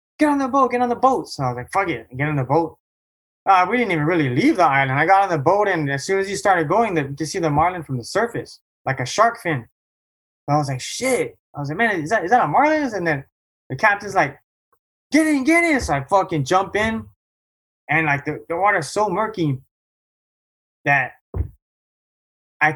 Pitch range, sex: 130-185 Hz, male